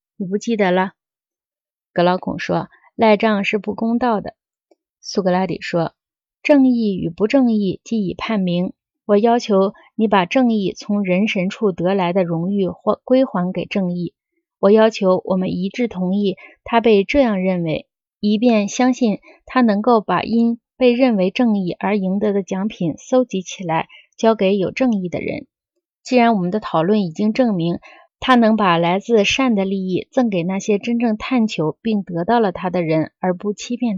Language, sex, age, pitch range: Chinese, female, 20-39, 185-240 Hz